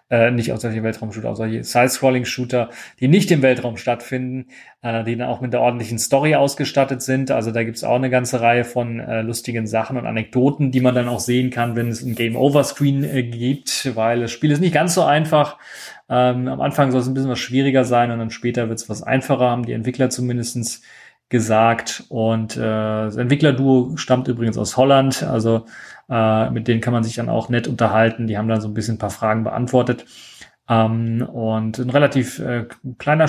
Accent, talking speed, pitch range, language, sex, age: German, 205 wpm, 115-135 Hz, German, male, 30-49